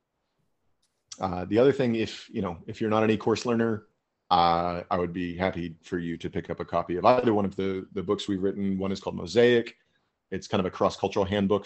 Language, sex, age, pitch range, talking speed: English, male, 30-49, 95-115 Hz, 225 wpm